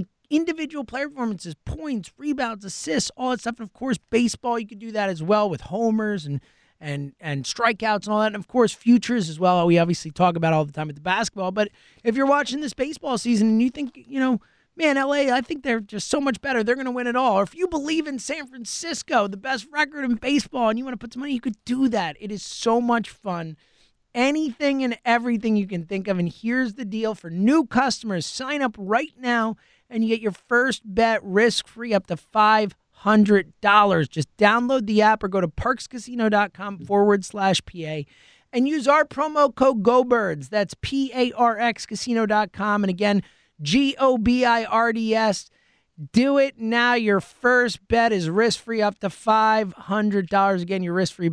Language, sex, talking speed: English, male, 190 wpm